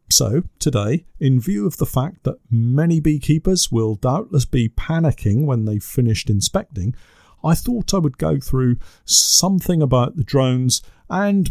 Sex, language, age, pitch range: male, English, 50-69, 115-170 Hz